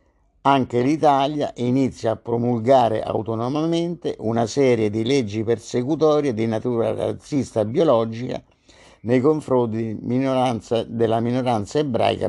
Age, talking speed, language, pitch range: 50-69, 105 wpm, Italian, 105-135 Hz